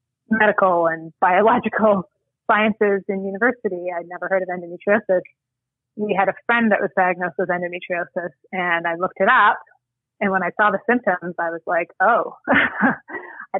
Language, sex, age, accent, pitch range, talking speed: English, female, 30-49, American, 155-195 Hz, 160 wpm